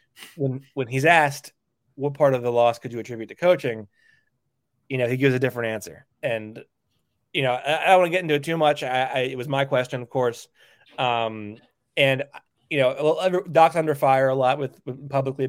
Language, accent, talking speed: English, American, 205 wpm